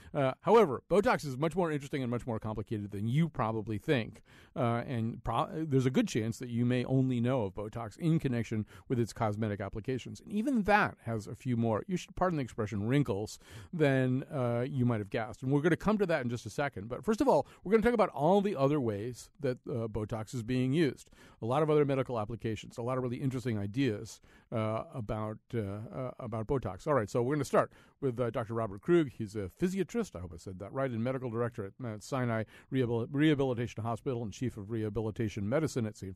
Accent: American